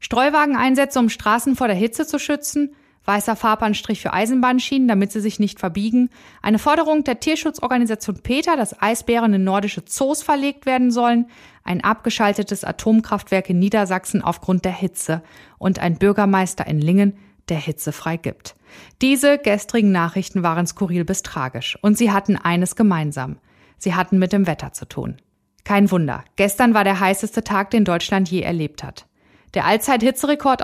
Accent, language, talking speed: German, German, 155 wpm